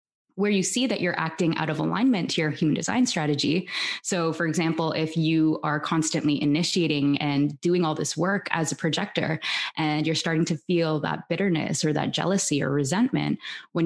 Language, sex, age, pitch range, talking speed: English, female, 20-39, 160-200 Hz, 185 wpm